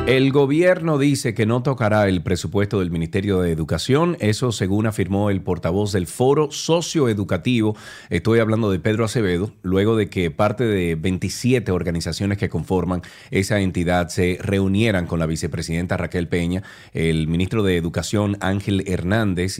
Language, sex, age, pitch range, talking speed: Spanish, male, 30-49, 85-110 Hz, 150 wpm